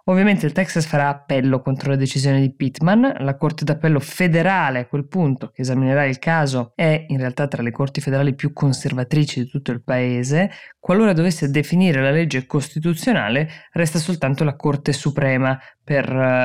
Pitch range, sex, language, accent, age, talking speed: 125-150 Hz, female, Italian, native, 20-39, 170 wpm